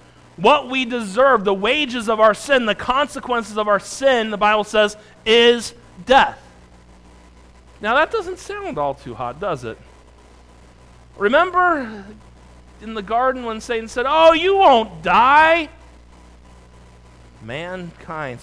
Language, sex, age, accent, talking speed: English, male, 40-59, American, 125 wpm